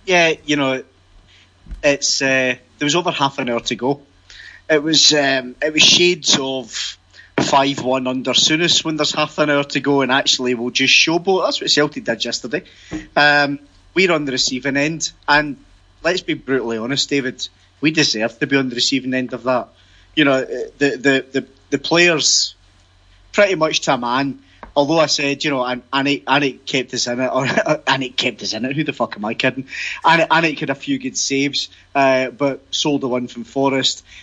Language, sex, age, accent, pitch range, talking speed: English, male, 30-49, British, 120-145 Hz, 200 wpm